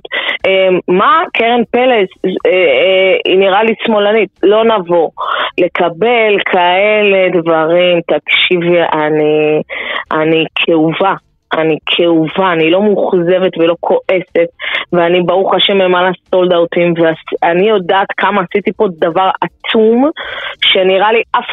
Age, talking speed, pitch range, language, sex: 20-39, 115 wpm, 180-230 Hz, Hebrew, female